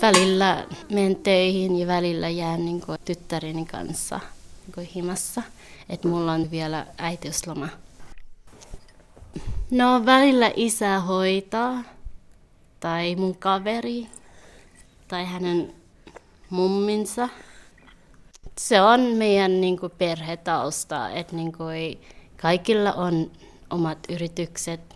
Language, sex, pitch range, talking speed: Finnish, female, 155-190 Hz, 95 wpm